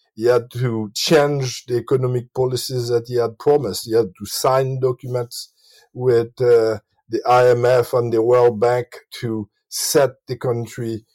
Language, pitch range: English, 110-135 Hz